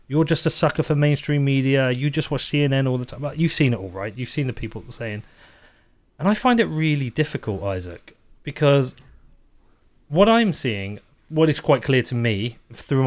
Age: 30-49